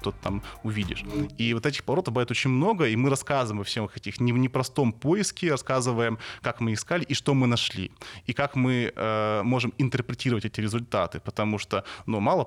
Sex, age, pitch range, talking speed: male, 20-39, 105-125 Hz, 190 wpm